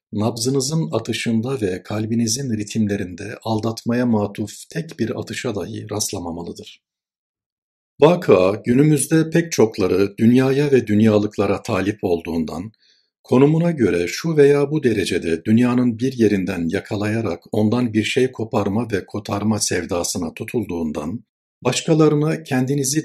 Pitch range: 100-130 Hz